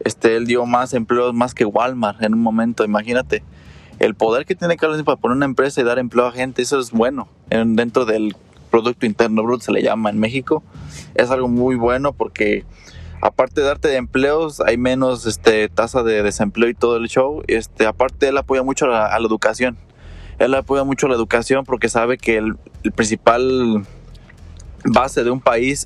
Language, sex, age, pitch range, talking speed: Spanish, male, 20-39, 110-130 Hz, 195 wpm